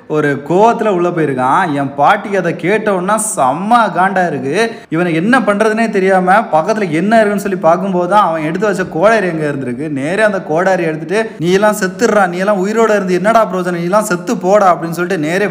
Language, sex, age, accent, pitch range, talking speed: Tamil, male, 20-39, native, 140-185 Hz, 180 wpm